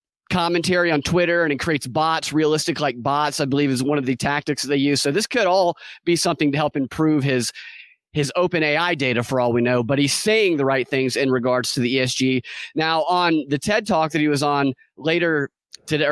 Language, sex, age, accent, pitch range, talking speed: English, male, 30-49, American, 140-175 Hz, 220 wpm